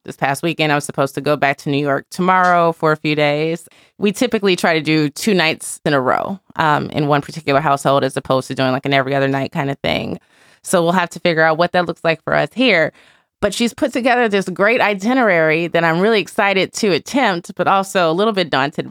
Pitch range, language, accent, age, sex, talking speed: 150-190 Hz, English, American, 20-39, female, 240 wpm